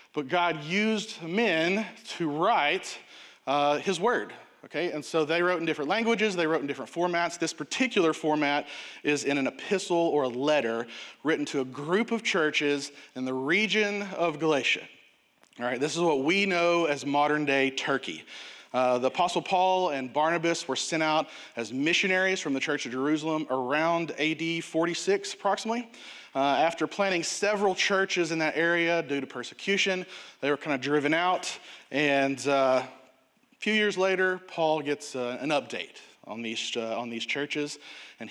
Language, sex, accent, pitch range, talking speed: English, male, American, 135-180 Hz, 170 wpm